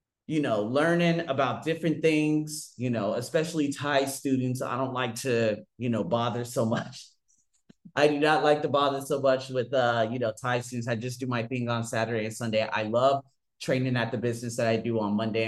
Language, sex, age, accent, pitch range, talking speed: English, male, 30-49, American, 110-130 Hz, 210 wpm